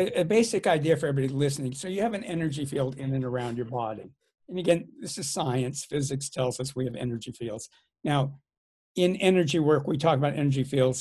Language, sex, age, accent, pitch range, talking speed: English, male, 60-79, American, 130-165 Hz, 205 wpm